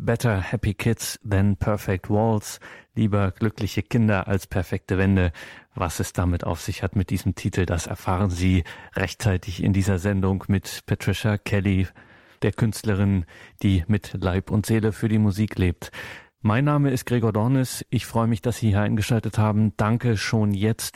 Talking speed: 165 wpm